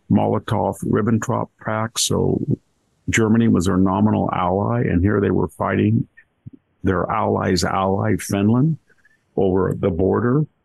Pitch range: 100-125 Hz